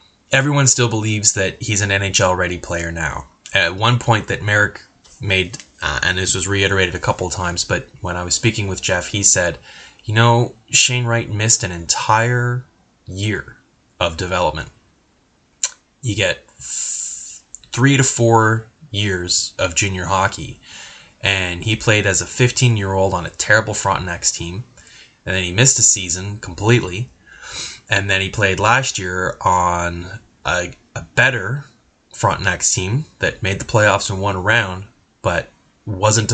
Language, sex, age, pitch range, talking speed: English, male, 10-29, 90-115 Hz, 150 wpm